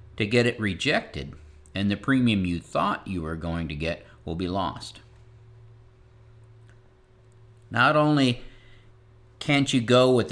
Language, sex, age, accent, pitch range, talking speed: English, male, 50-69, American, 90-120 Hz, 135 wpm